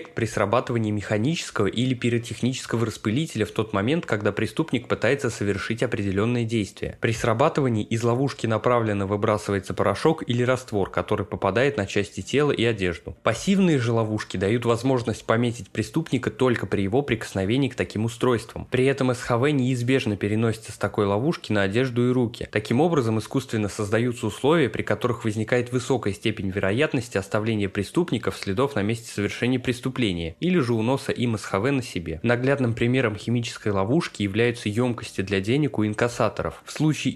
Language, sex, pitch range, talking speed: Russian, male, 105-125 Hz, 155 wpm